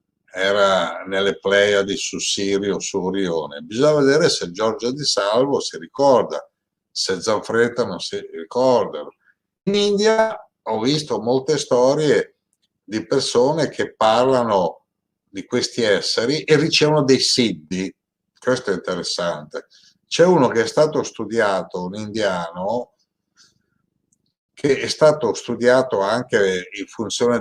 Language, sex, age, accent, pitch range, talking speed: Italian, male, 60-79, native, 100-145 Hz, 120 wpm